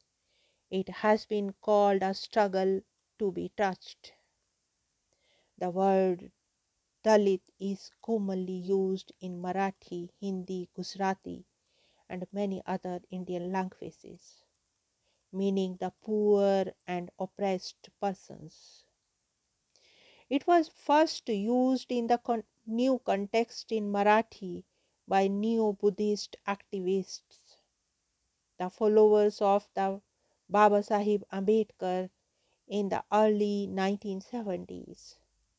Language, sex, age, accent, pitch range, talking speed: English, female, 50-69, Indian, 185-215 Hz, 90 wpm